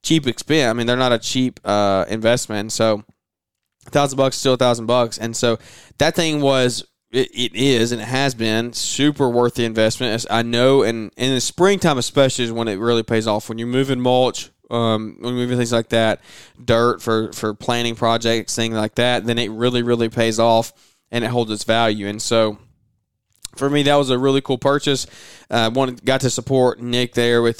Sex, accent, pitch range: male, American, 110-130 Hz